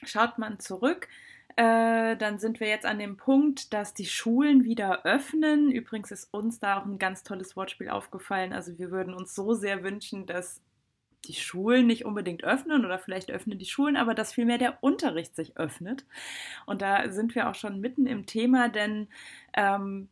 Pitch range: 185-235 Hz